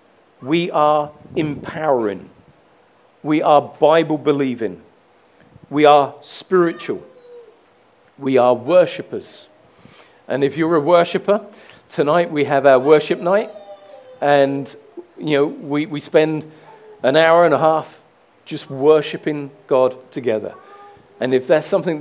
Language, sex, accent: English, male, British